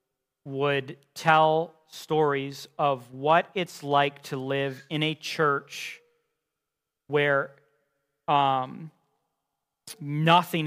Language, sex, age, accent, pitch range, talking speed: English, male, 40-59, American, 135-165 Hz, 85 wpm